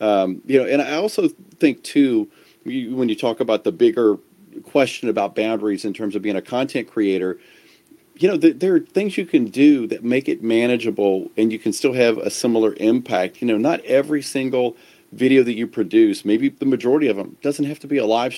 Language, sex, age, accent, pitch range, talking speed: English, male, 40-59, American, 110-175 Hz, 215 wpm